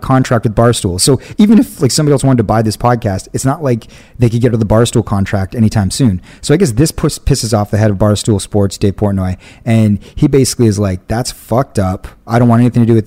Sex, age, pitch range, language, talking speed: male, 30-49, 105-125 Hz, English, 250 wpm